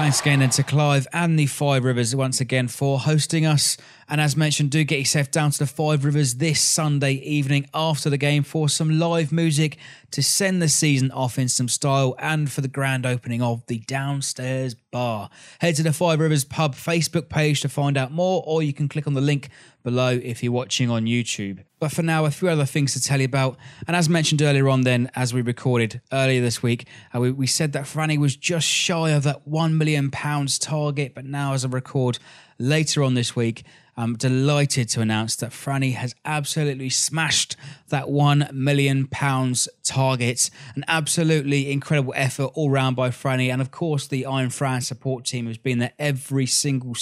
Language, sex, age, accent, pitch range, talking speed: English, male, 20-39, British, 130-150 Hz, 200 wpm